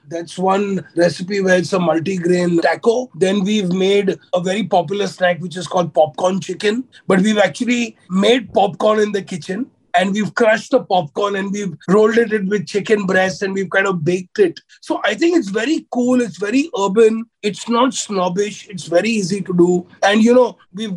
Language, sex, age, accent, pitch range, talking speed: English, male, 30-49, Indian, 180-230 Hz, 190 wpm